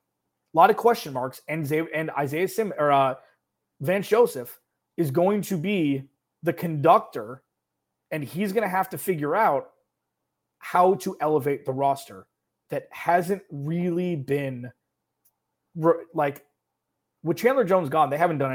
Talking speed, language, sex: 140 wpm, English, male